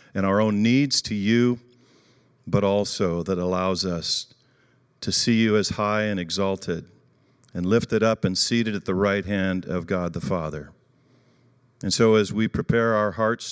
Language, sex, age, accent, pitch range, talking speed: English, male, 40-59, American, 95-125 Hz, 170 wpm